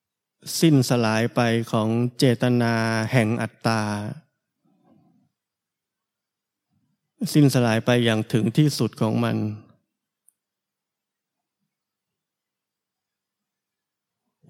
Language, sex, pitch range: Thai, male, 120-145 Hz